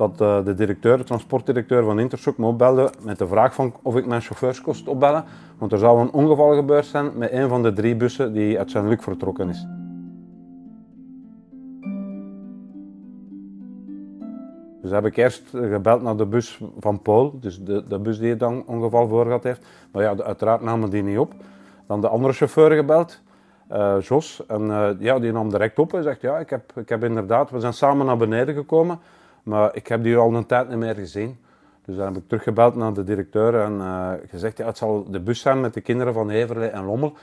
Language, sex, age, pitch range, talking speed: Dutch, male, 40-59, 105-125 Hz, 200 wpm